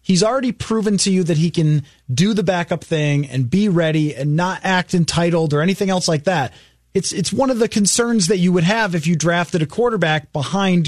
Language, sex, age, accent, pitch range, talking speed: English, male, 30-49, American, 155-210 Hz, 220 wpm